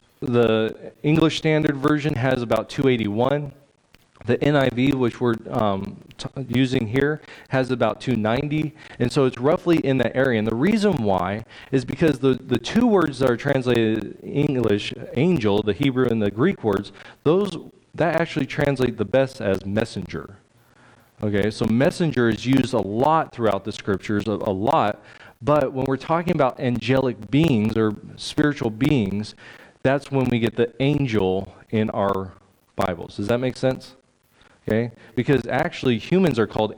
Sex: male